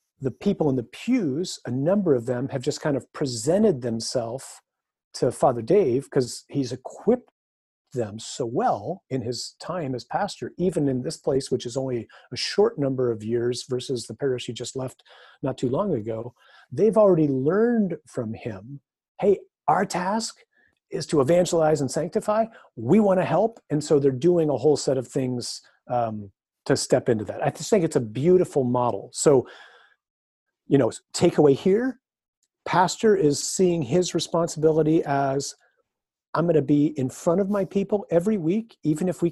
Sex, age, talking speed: male, 40-59, 175 wpm